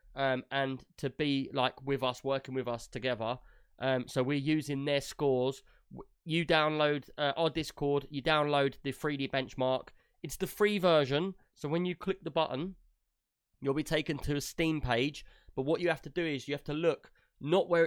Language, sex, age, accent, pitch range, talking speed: English, male, 20-39, British, 135-165 Hz, 190 wpm